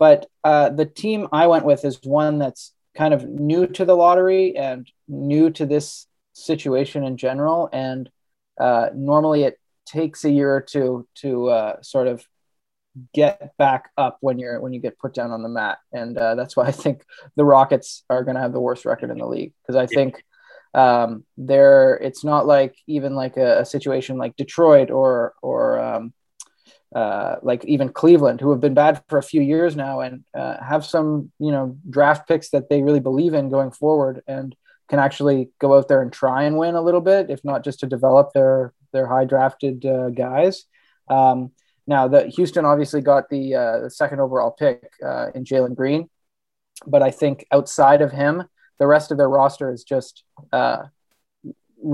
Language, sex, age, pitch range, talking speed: English, male, 20-39, 130-150 Hz, 195 wpm